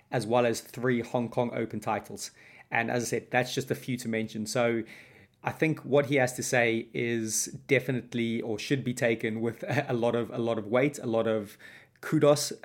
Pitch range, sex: 115-135 Hz, male